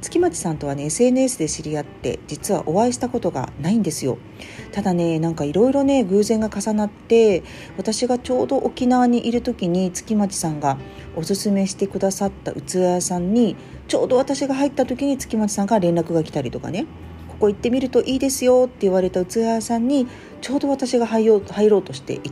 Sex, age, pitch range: female, 40-59, 155-235 Hz